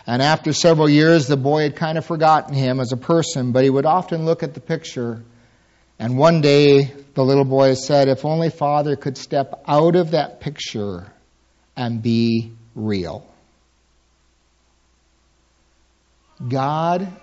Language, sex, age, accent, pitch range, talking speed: English, male, 50-69, American, 110-155 Hz, 145 wpm